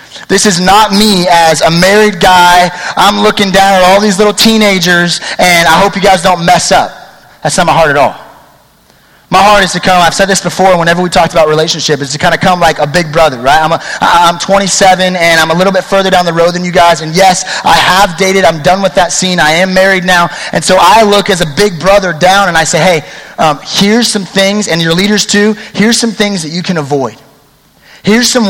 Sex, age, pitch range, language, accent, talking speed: male, 30-49, 170-200 Hz, English, American, 240 wpm